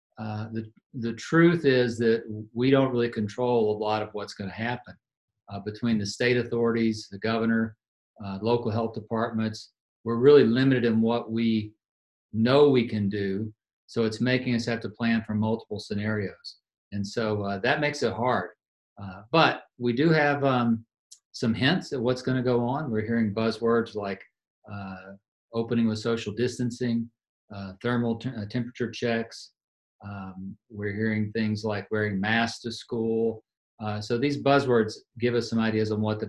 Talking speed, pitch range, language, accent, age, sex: 170 wpm, 105-120 Hz, English, American, 50-69, male